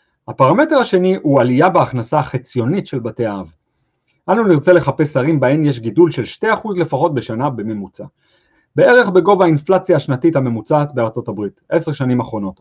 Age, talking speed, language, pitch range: 40-59, 150 wpm, English, 110-145 Hz